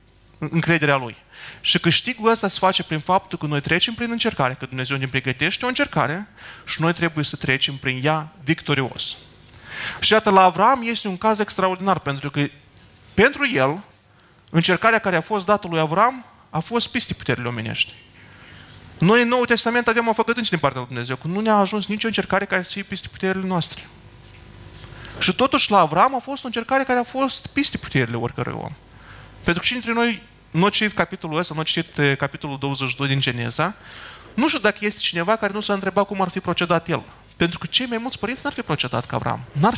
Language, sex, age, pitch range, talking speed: Romanian, male, 30-49, 140-220 Hz, 200 wpm